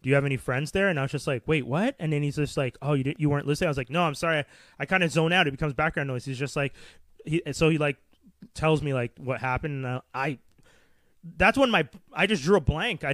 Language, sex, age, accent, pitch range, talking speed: English, male, 20-39, American, 130-160 Hz, 290 wpm